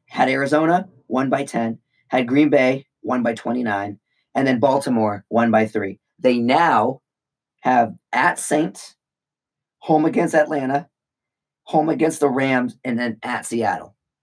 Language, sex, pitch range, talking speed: English, male, 115-145 Hz, 140 wpm